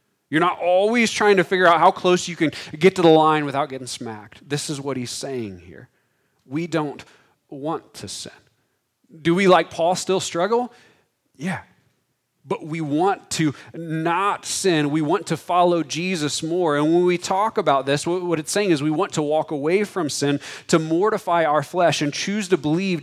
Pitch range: 140-185 Hz